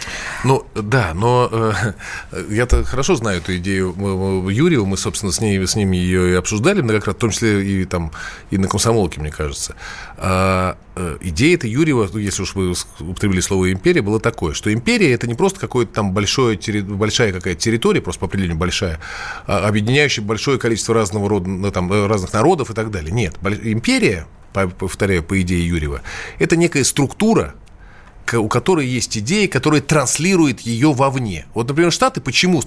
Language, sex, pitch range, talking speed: Russian, male, 95-150 Hz, 180 wpm